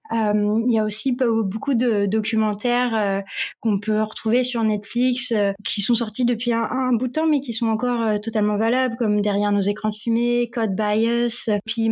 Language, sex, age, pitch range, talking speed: French, female, 20-39, 205-240 Hz, 200 wpm